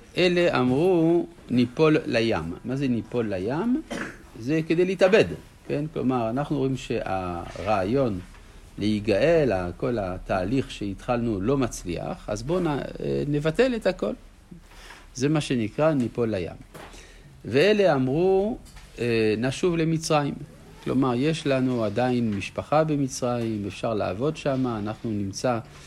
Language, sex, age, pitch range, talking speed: Hebrew, male, 50-69, 100-150 Hz, 110 wpm